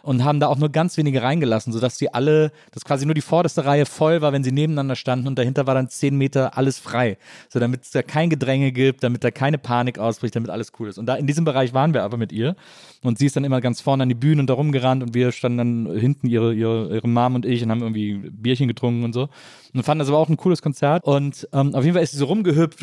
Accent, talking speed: German, 275 wpm